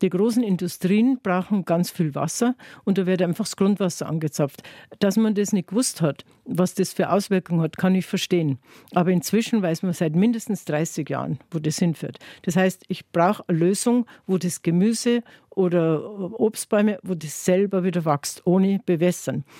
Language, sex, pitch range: German, female, 165-200 Hz